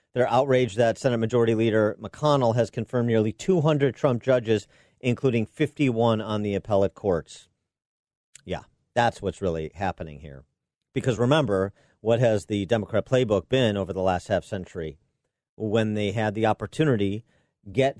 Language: English